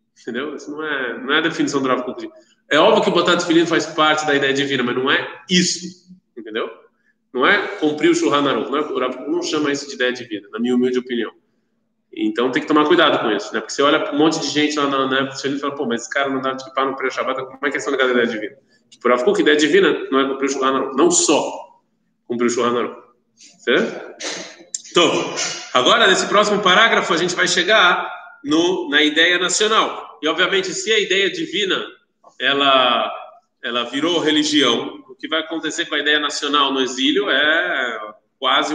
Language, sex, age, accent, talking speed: Portuguese, male, 20-39, Brazilian, 210 wpm